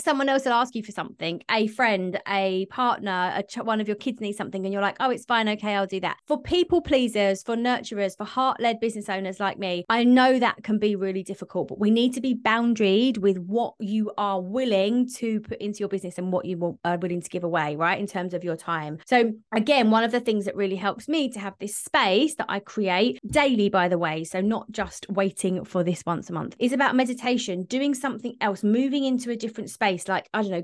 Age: 20-39